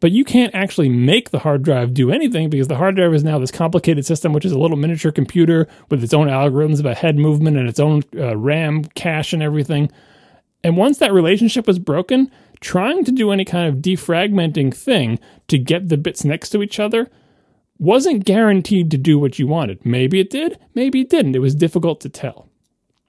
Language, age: English, 30-49